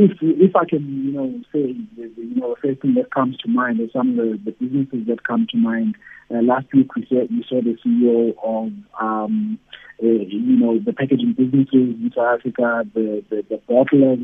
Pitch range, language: 120-160 Hz, English